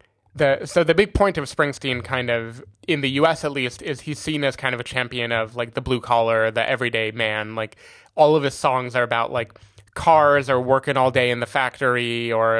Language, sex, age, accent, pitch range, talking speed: English, male, 20-39, American, 115-140 Hz, 225 wpm